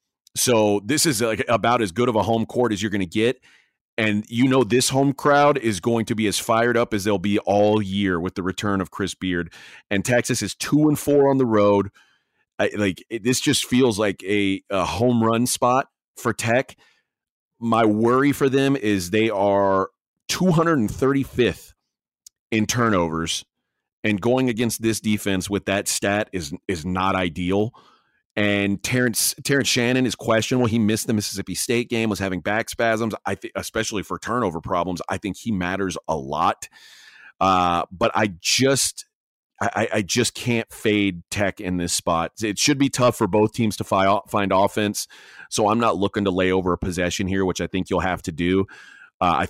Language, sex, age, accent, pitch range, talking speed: English, male, 30-49, American, 95-120 Hz, 185 wpm